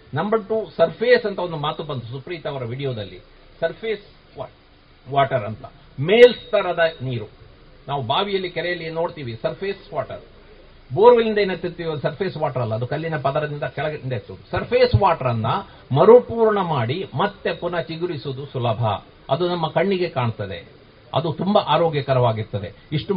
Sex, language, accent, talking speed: male, Kannada, native, 125 wpm